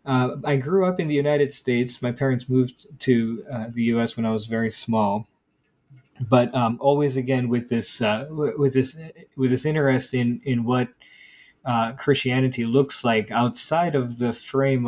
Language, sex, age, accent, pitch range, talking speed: English, male, 20-39, American, 115-140 Hz, 175 wpm